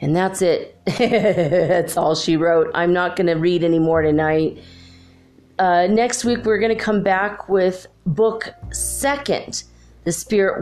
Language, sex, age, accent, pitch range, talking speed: English, female, 30-49, American, 155-210 Hz, 160 wpm